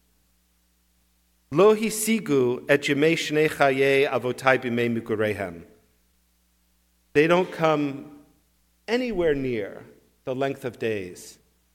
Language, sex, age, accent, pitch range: English, male, 50-69, American, 115-170 Hz